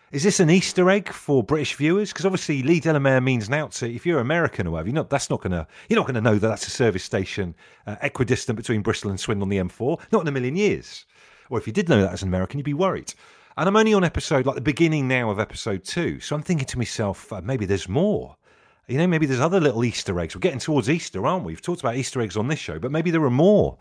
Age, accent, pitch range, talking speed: 40-59, British, 110-160 Hz, 260 wpm